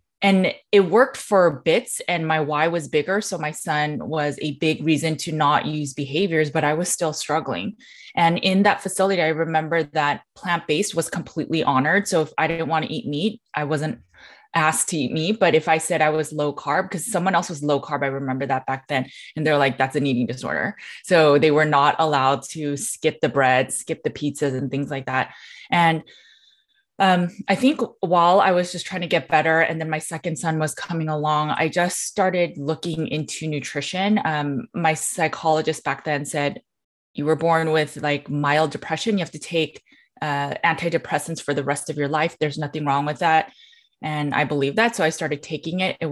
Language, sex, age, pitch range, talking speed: English, female, 20-39, 145-170 Hz, 205 wpm